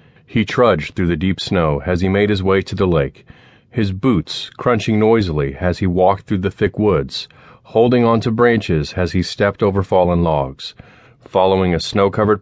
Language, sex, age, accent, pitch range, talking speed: English, male, 40-59, American, 90-120 Hz, 185 wpm